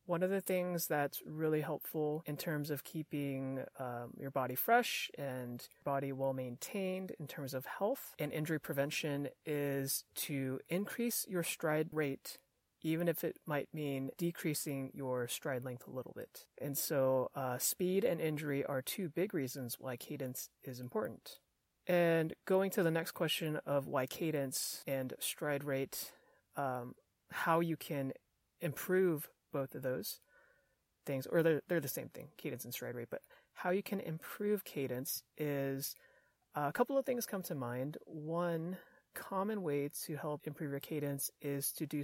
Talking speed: 165 wpm